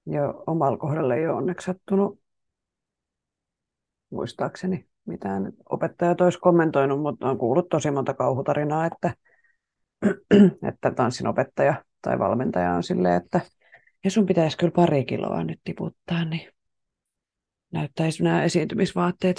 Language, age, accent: Finnish, 30-49, native